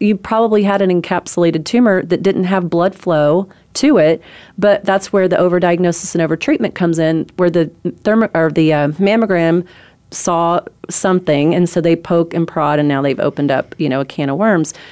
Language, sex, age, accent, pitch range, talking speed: English, female, 30-49, American, 160-200 Hz, 195 wpm